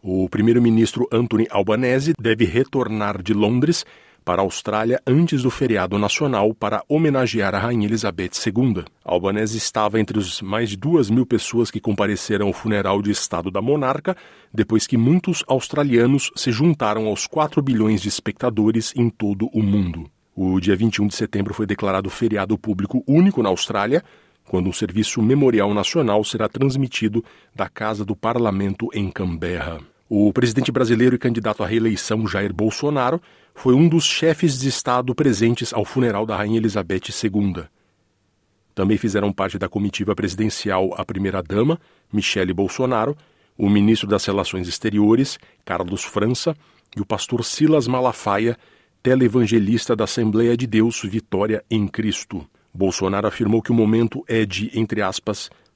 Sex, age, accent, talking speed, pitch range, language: male, 40-59, Brazilian, 150 wpm, 100-125 Hz, Portuguese